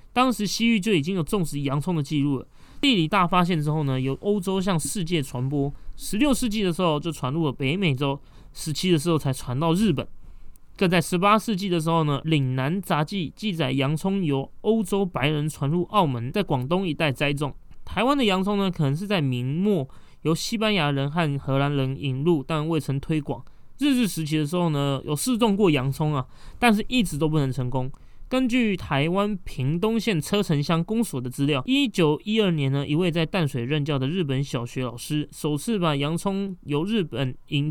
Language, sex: Chinese, male